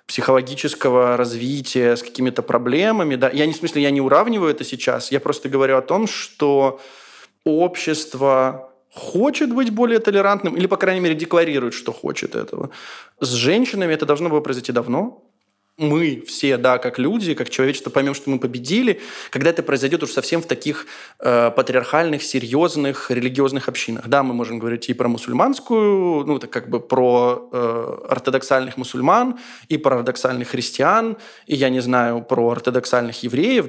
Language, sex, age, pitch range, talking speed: Russian, male, 20-39, 125-155 Hz, 160 wpm